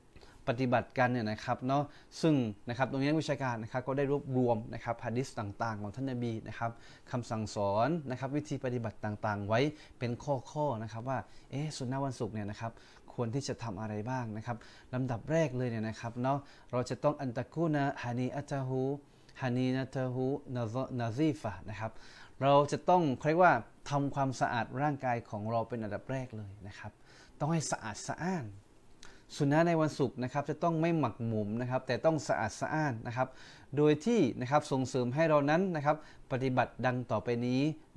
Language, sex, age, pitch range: Thai, male, 20-39, 120-145 Hz